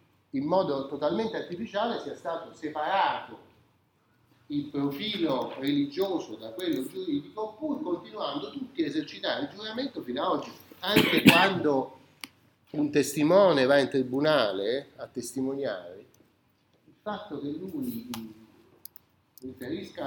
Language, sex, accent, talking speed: Italian, male, native, 110 wpm